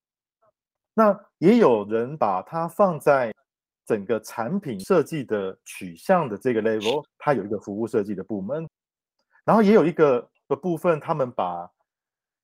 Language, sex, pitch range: Chinese, male, 110-180 Hz